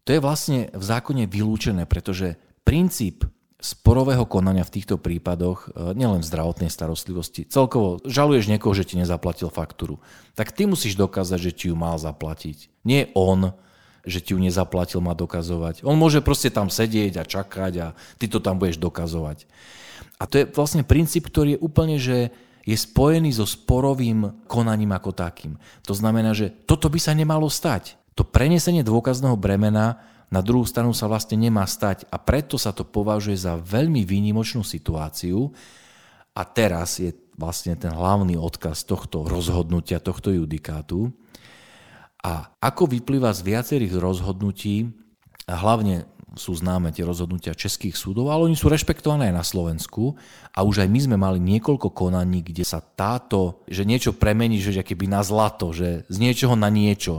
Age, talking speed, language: 40-59, 160 wpm, Slovak